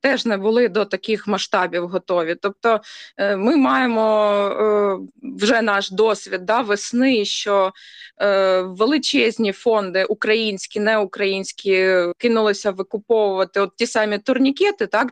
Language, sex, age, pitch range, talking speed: Ukrainian, female, 20-39, 205-255 Hz, 105 wpm